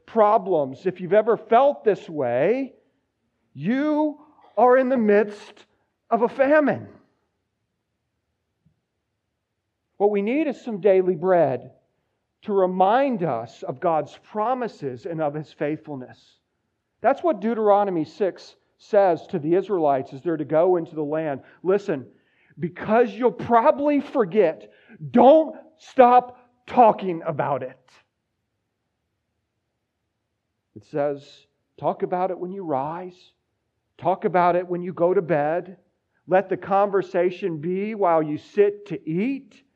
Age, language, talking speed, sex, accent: 40-59, English, 125 wpm, male, American